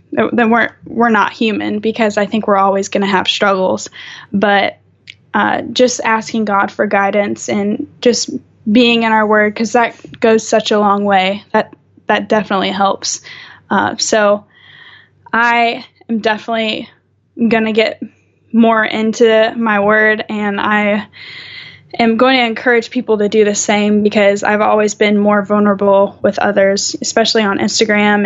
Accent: American